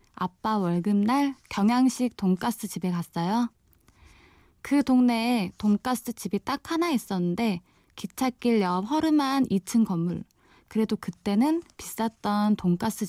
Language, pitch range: Korean, 195-250 Hz